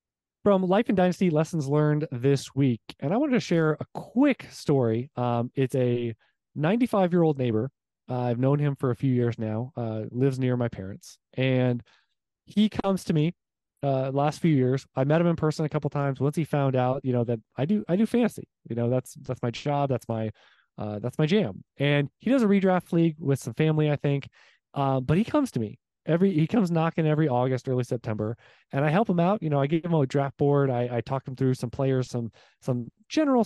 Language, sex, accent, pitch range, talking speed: English, male, American, 125-170 Hz, 225 wpm